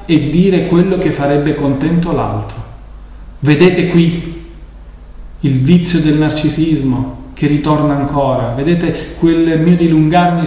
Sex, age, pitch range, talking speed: male, 40-59, 120-180 Hz, 115 wpm